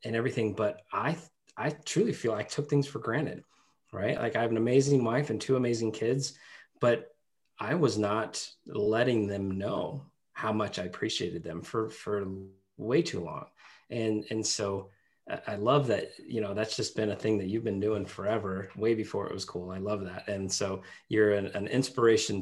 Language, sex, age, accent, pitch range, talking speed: English, male, 20-39, American, 100-120 Hz, 195 wpm